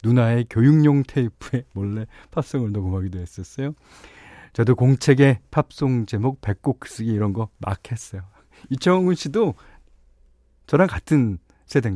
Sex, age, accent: male, 40-59, native